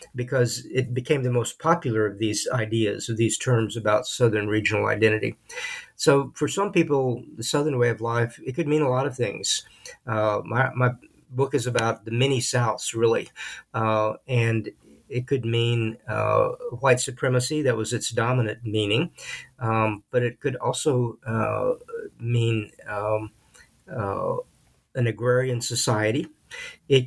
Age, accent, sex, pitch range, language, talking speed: 50-69, American, male, 110-135 Hz, English, 150 wpm